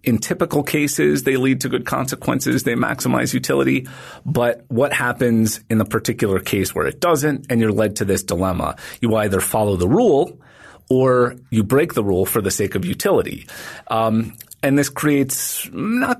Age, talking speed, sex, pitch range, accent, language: 30-49, 175 wpm, male, 110-140 Hz, American, English